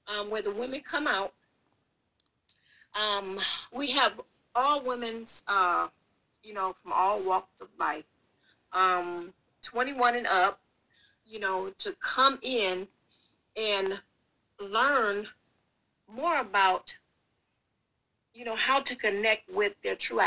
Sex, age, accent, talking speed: female, 40-59, American, 120 wpm